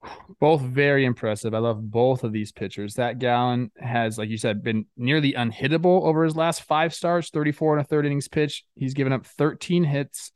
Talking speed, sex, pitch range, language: 195 wpm, male, 120-165 Hz, English